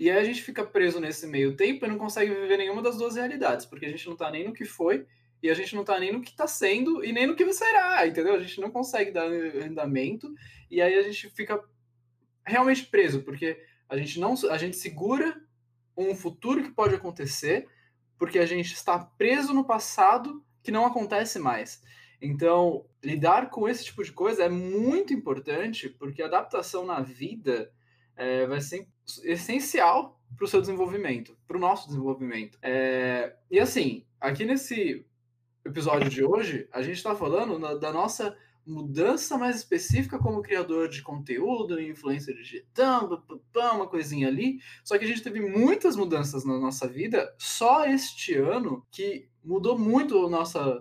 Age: 20-39